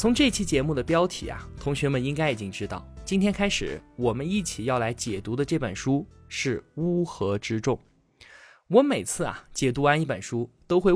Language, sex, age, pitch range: Chinese, male, 20-39, 120-180 Hz